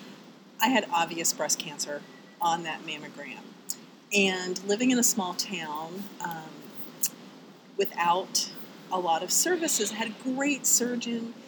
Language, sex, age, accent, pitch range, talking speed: English, female, 40-59, American, 185-245 Hz, 130 wpm